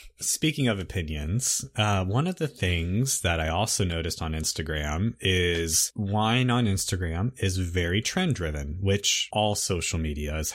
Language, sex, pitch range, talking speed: English, male, 85-110 Hz, 150 wpm